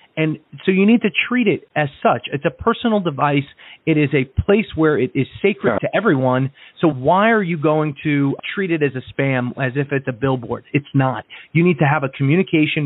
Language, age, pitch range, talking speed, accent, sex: English, 30-49, 135-170 Hz, 220 wpm, American, male